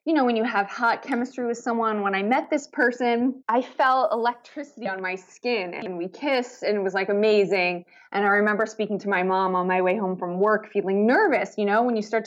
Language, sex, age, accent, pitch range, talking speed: English, female, 20-39, American, 210-265 Hz, 235 wpm